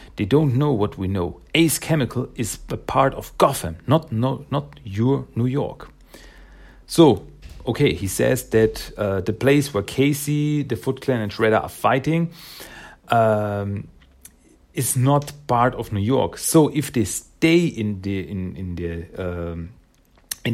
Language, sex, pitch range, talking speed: German, male, 100-140 Hz, 160 wpm